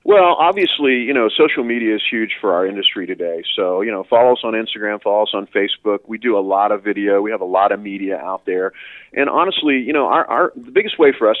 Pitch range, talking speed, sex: 100-125 Hz, 255 wpm, male